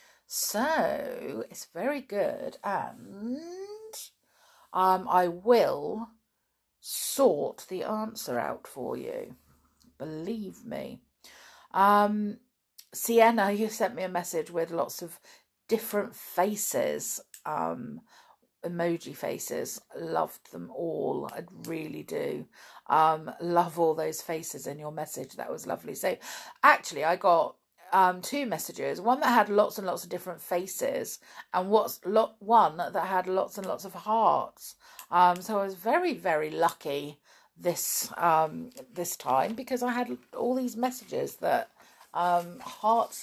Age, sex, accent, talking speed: 50-69, female, British, 130 wpm